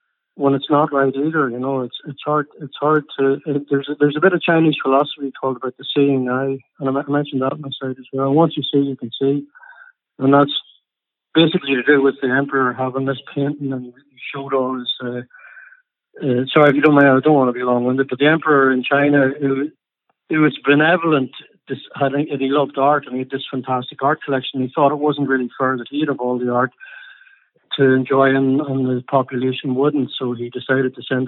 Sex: male